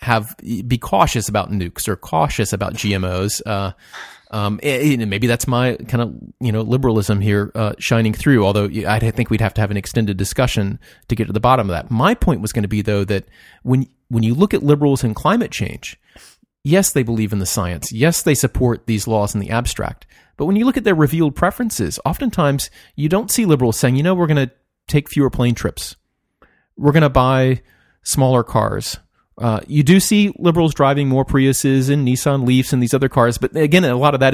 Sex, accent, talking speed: male, American, 215 wpm